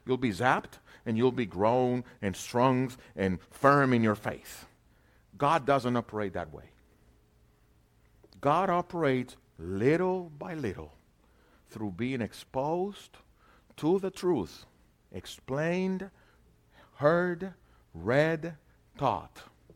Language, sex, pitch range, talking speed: English, male, 105-170 Hz, 105 wpm